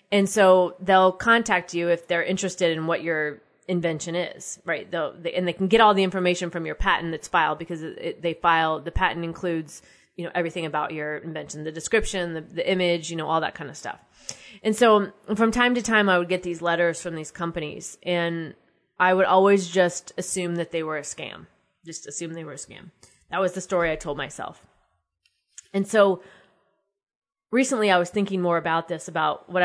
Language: English